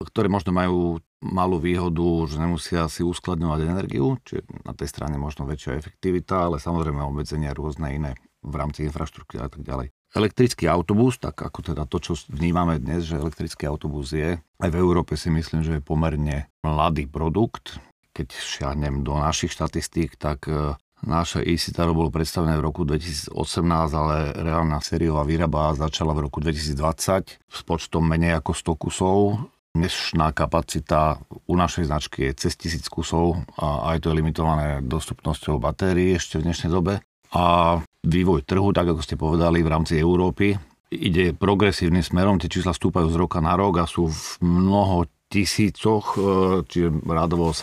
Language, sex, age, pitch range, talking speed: Slovak, male, 50-69, 75-90 Hz, 155 wpm